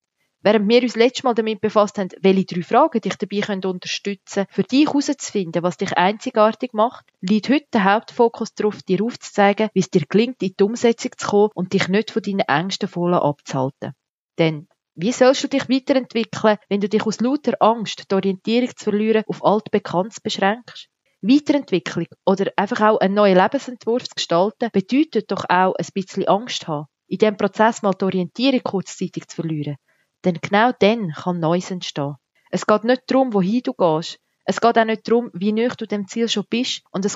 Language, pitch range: German, 180-230 Hz